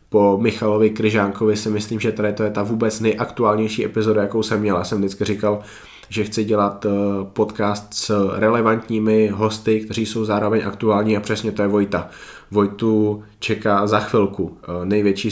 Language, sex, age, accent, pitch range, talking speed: Czech, male, 20-39, native, 100-110 Hz, 160 wpm